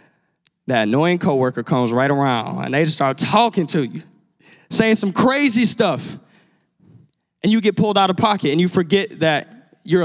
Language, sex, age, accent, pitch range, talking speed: English, male, 20-39, American, 165-210 Hz, 175 wpm